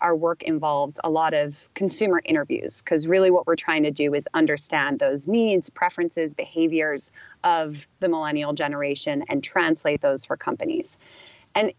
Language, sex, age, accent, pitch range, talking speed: English, female, 30-49, American, 160-260 Hz, 160 wpm